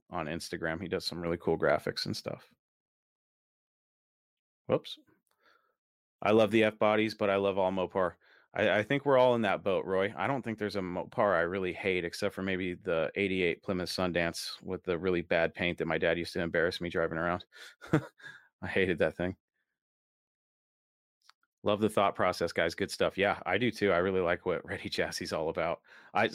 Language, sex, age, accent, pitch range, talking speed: English, male, 30-49, American, 95-120 Hz, 195 wpm